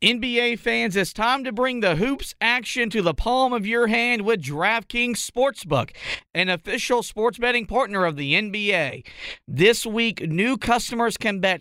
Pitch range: 180-235 Hz